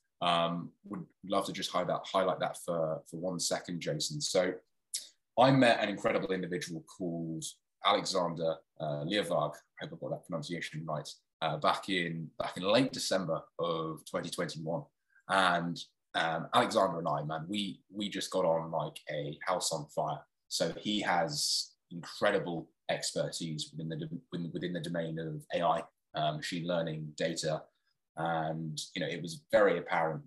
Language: English